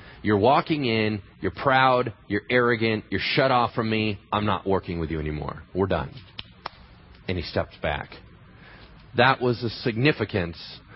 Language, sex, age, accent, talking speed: English, male, 40-59, American, 155 wpm